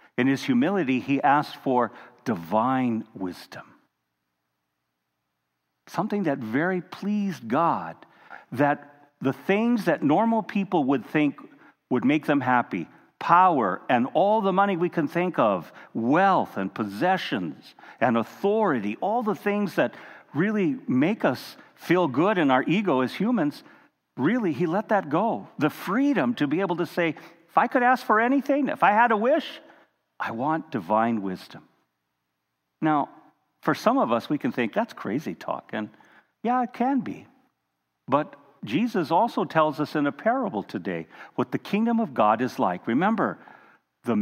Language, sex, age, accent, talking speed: English, male, 50-69, American, 155 wpm